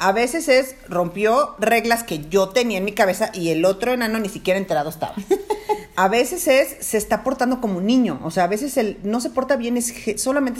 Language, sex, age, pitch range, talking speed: Spanish, female, 40-59, 190-255 Hz, 220 wpm